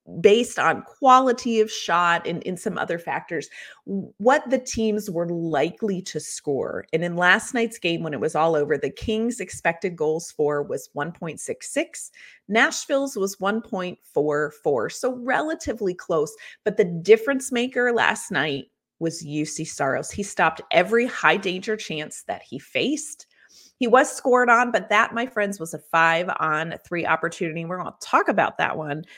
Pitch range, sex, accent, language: 160-230 Hz, female, American, English